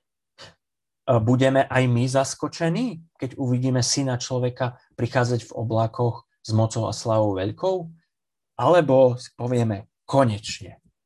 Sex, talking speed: male, 105 wpm